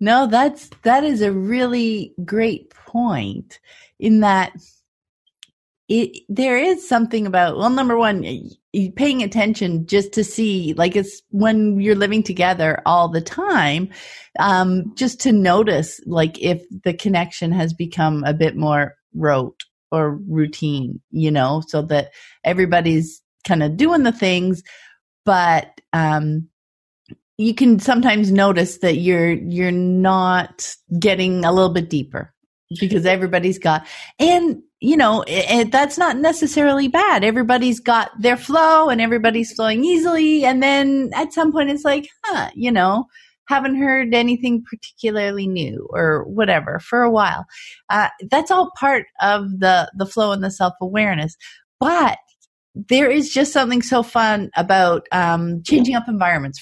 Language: English